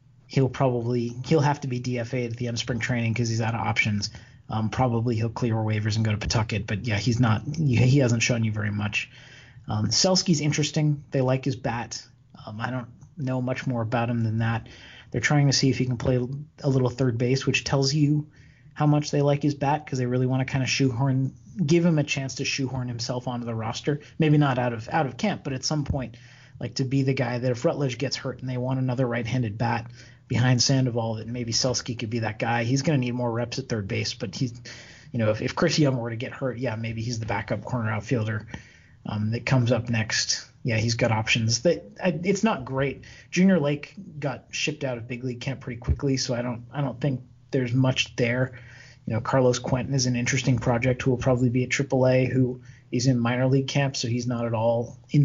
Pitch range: 120-135 Hz